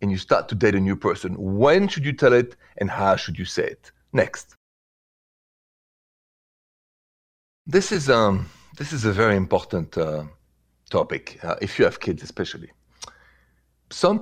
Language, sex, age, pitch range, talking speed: English, male, 40-59, 90-140 Hz, 150 wpm